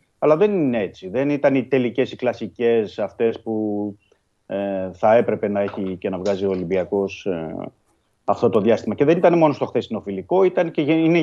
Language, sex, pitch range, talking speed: Greek, male, 100-135 Hz, 190 wpm